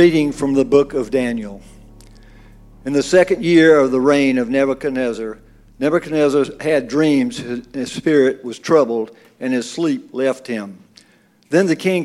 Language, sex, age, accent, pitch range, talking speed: English, male, 50-69, American, 125-155 Hz, 155 wpm